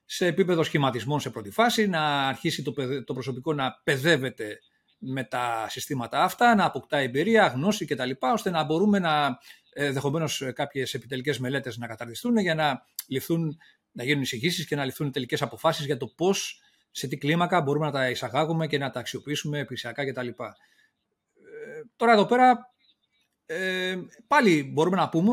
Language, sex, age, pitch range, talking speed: Greek, male, 30-49, 130-180 Hz, 165 wpm